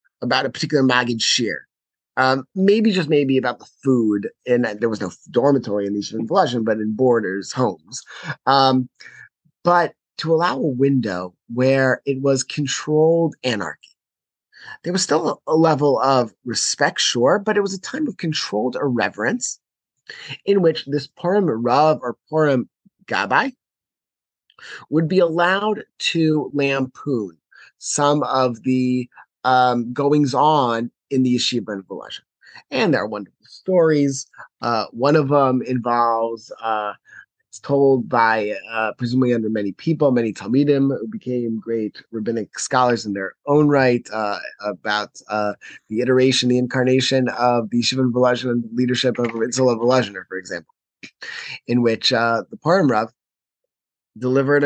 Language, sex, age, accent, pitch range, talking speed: English, male, 30-49, American, 115-145 Hz, 145 wpm